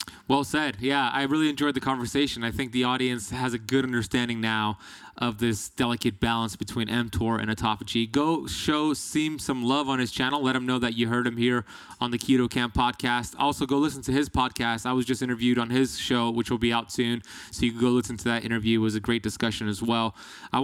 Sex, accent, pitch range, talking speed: male, American, 115-135 Hz, 235 wpm